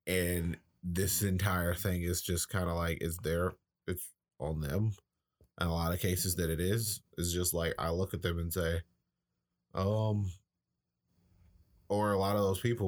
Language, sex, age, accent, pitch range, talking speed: English, male, 30-49, American, 85-95 Hz, 175 wpm